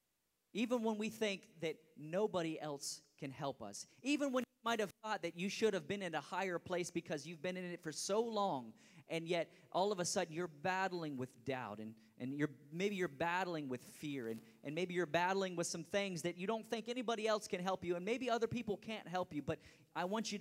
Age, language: 30-49, English